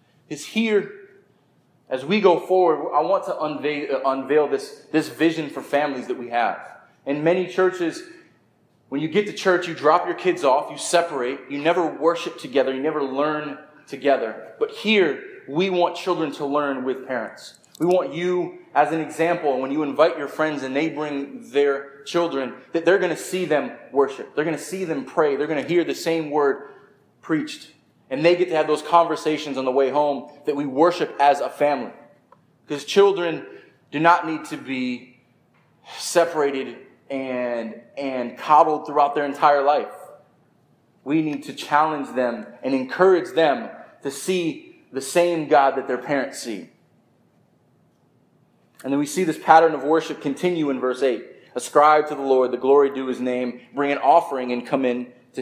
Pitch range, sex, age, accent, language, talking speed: 140-170 Hz, male, 20-39, American, English, 180 wpm